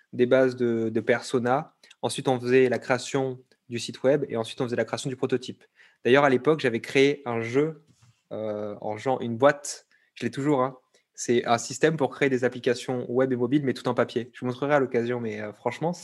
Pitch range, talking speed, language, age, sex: 120-140 Hz, 225 wpm, French, 20-39, male